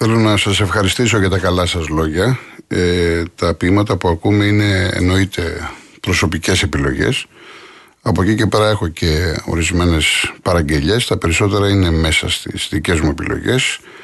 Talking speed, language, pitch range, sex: 145 wpm, Greek, 85-110 Hz, male